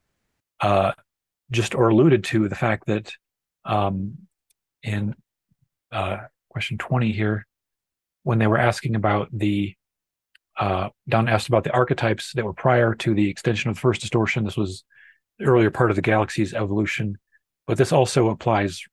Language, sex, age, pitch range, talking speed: English, male, 30-49, 105-120 Hz, 155 wpm